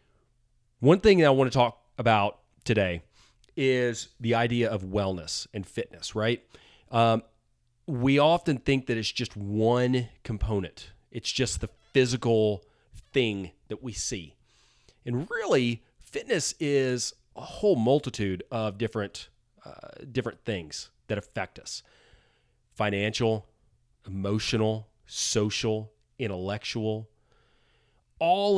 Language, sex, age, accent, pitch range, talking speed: English, male, 30-49, American, 100-125 Hz, 115 wpm